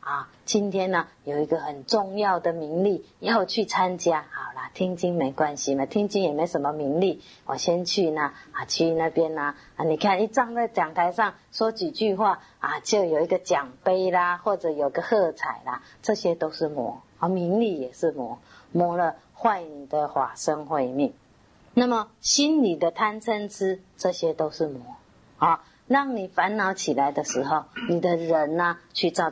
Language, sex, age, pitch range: Chinese, female, 30-49, 155-205 Hz